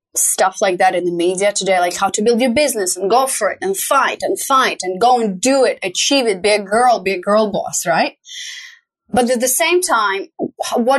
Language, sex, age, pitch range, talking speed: English, female, 20-39, 175-235 Hz, 230 wpm